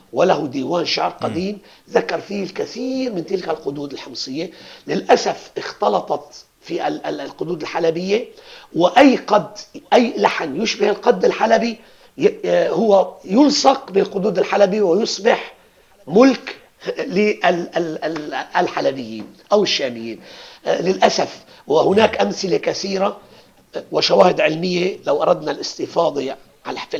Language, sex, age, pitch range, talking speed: Arabic, male, 40-59, 175-225 Hz, 95 wpm